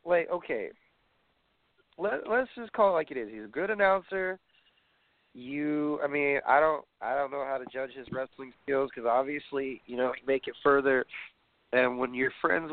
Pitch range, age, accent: 130-180 Hz, 30-49, American